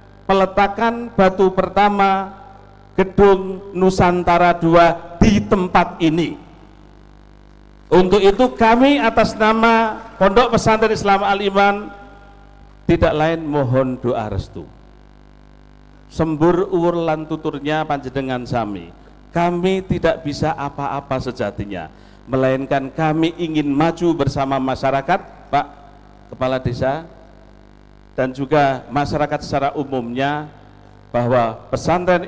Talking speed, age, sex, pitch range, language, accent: 90 wpm, 50-69, male, 125-175 Hz, Indonesian, native